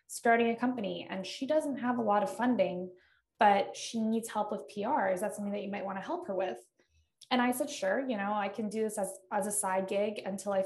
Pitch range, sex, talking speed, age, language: 190-230 Hz, female, 255 wpm, 20-39, English